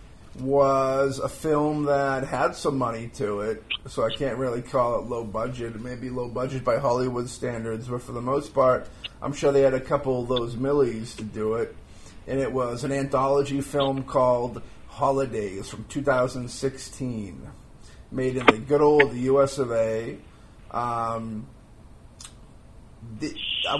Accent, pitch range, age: American, 120-140 Hz, 30-49